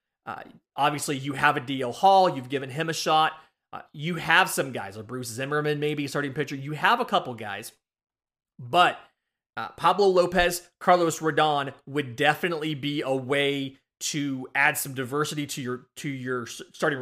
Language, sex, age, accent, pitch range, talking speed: English, male, 30-49, American, 135-175 Hz, 175 wpm